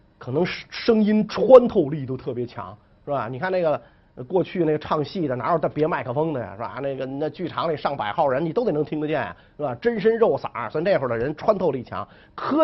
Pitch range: 135-225 Hz